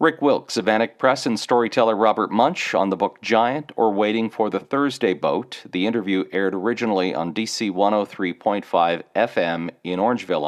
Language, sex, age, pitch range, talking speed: English, male, 40-59, 95-135 Hz, 160 wpm